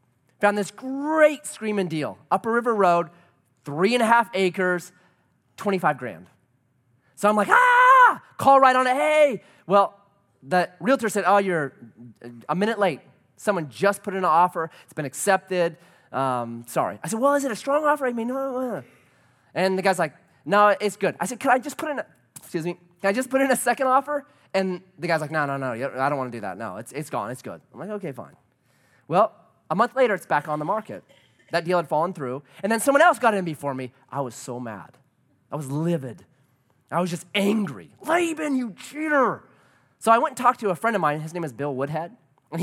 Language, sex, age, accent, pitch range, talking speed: English, male, 30-49, American, 150-245 Hz, 220 wpm